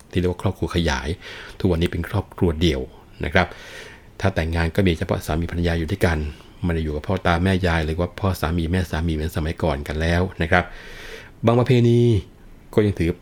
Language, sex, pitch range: Thai, male, 80-95 Hz